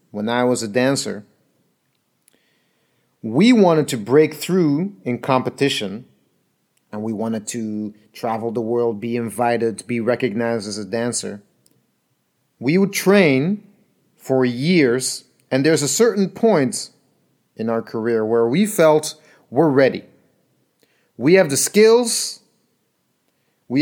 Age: 30-49